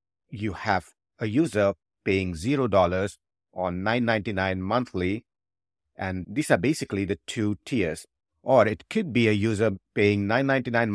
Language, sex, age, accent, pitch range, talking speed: English, male, 50-69, Indian, 95-120 Hz, 130 wpm